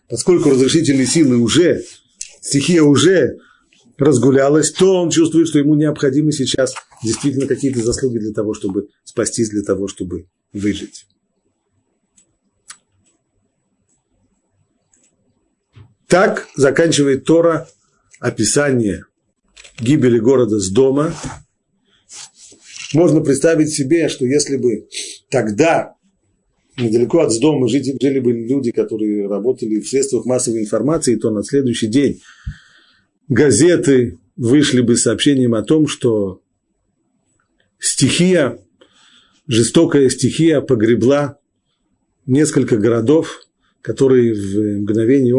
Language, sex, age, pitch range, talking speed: Russian, male, 50-69, 115-150 Hz, 100 wpm